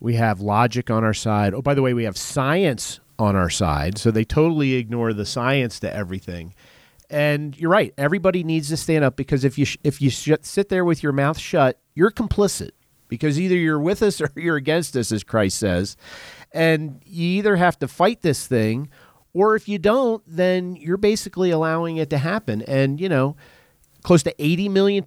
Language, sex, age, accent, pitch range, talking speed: English, male, 40-59, American, 120-165 Hz, 200 wpm